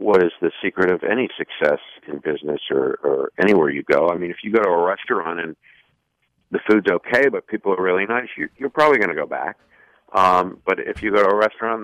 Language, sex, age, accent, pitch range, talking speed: English, male, 50-69, American, 90-120 Hz, 240 wpm